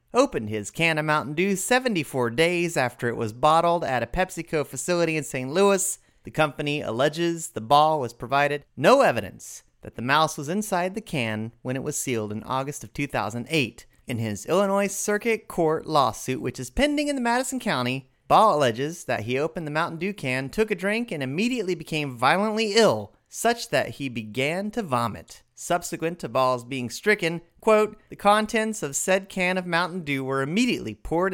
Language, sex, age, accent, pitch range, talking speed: English, male, 30-49, American, 125-190 Hz, 185 wpm